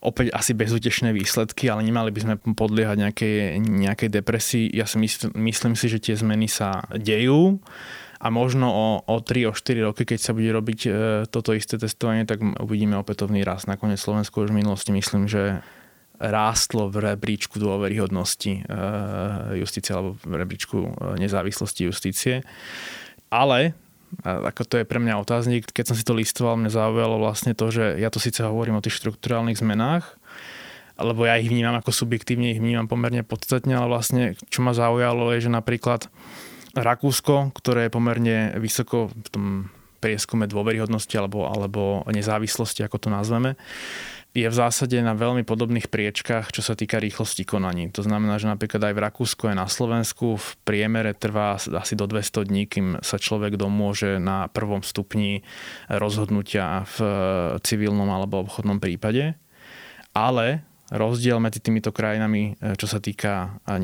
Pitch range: 105-115 Hz